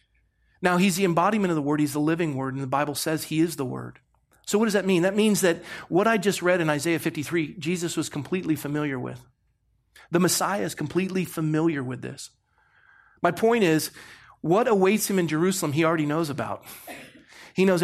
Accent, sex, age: American, male, 40-59